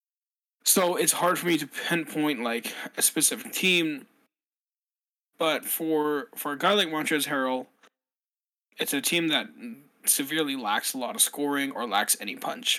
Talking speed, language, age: 155 wpm, English, 20-39